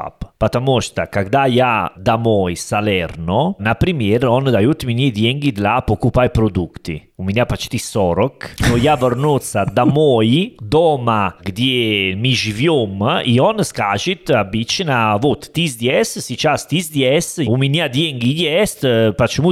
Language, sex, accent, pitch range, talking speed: Russian, male, Italian, 110-150 Hz, 130 wpm